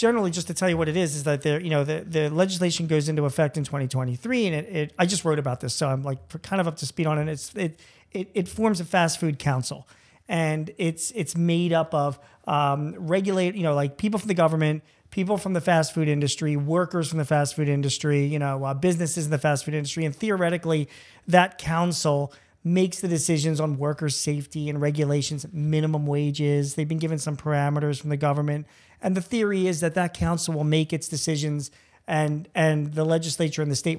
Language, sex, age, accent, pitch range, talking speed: English, male, 40-59, American, 145-170 Hz, 220 wpm